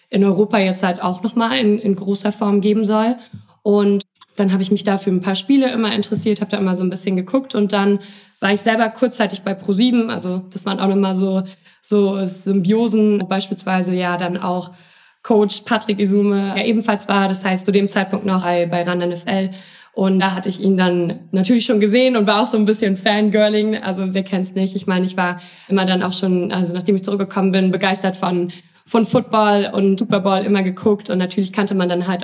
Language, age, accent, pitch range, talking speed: German, 20-39, German, 185-210 Hz, 210 wpm